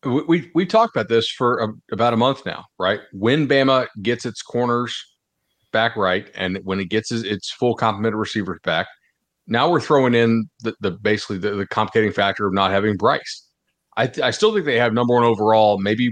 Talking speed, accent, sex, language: 210 wpm, American, male, English